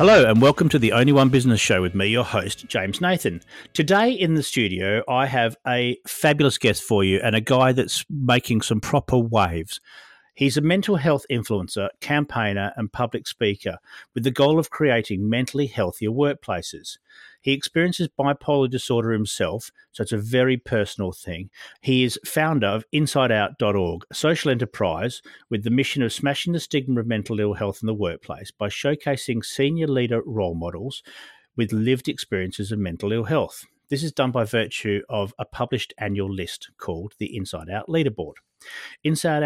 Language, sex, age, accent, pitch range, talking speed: English, male, 50-69, Australian, 105-140 Hz, 170 wpm